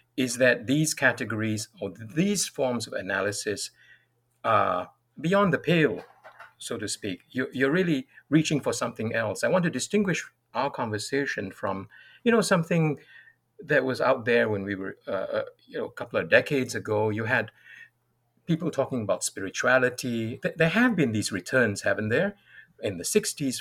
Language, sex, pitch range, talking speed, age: English, male, 110-165 Hz, 160 wpm, 50-69